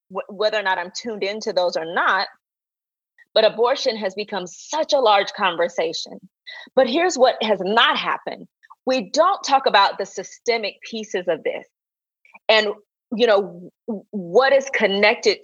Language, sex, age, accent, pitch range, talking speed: English, female, 30-49, American, 195-250 Hz, 150 wpm